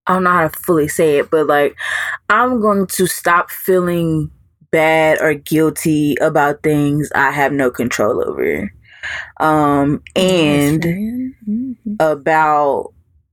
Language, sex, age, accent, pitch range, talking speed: English, female, 20-39, American, 150-175 Hz, 125 wpm